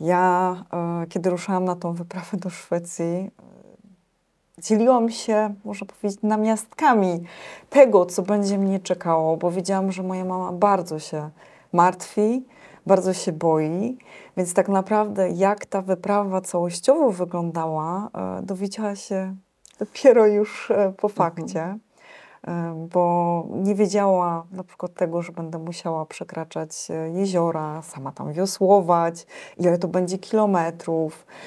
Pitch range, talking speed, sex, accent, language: 170-205 Hz, 115 wpm, female, native, Polish